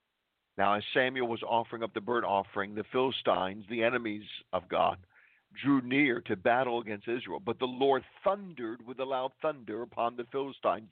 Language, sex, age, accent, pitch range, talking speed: English, male, 50-69, American, 115-135 Hz, 175 wpm